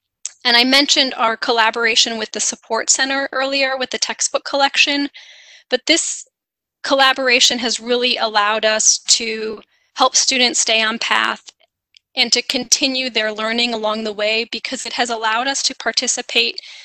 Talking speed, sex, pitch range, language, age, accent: 150 wpm, female, 220-255 Hz, English, 10-29, American